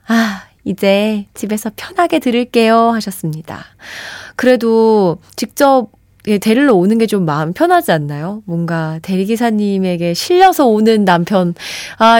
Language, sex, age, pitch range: Korean, female, 20-39, 175-240 Hz